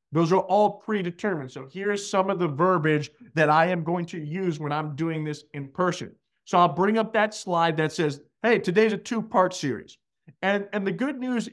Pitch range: 160-220 Hz